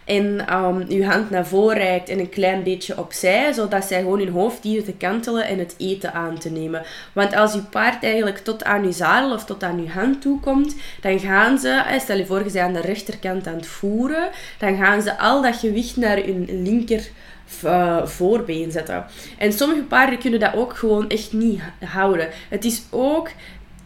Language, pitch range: Dutch, 190-235 Hz